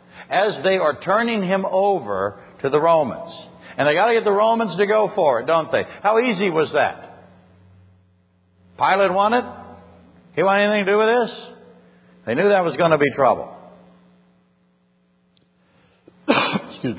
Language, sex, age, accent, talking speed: English, male, 60-79, American, 155 wpm